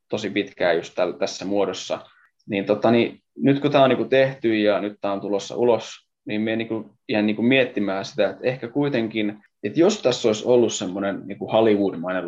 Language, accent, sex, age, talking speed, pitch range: Finnish, native, male, 20-39, 195 wpm, 100-125 Hz